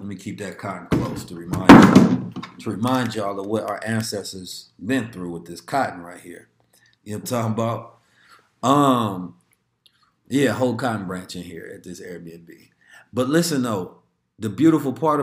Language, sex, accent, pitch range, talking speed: English, male, American, 110-135 Hz, 175 wpm